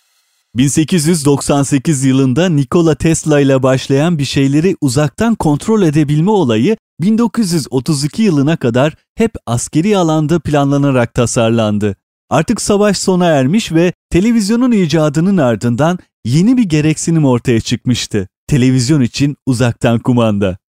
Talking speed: 105 wpm